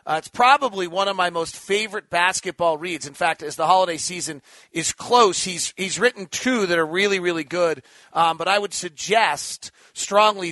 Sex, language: male, English